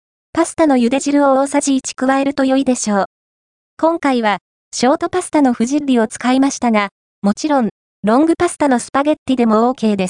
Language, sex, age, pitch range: Japanese, female, 20-39, 240-300 Hz